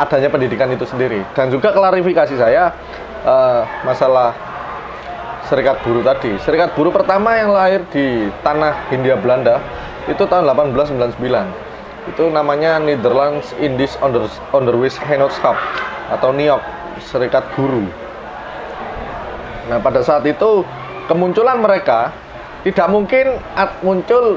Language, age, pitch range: Indonesian, 20-39, 135-190 Hz